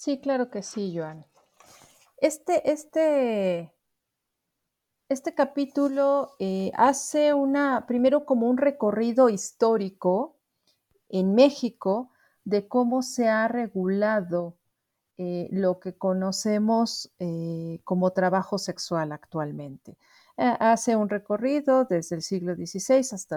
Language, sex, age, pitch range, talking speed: Spanish, female, 40-59, 180-255 Hz, 105 wpm